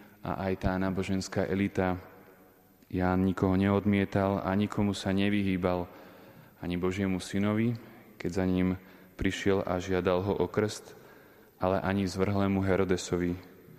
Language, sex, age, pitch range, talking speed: Slovak, male, 30-49, 95-105 Hz, 120 wpm